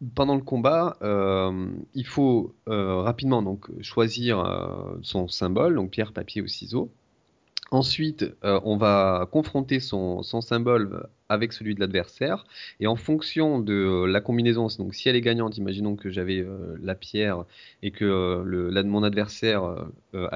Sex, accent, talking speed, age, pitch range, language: male, French, 160 wpm, 30-49, 95-120 Hz, French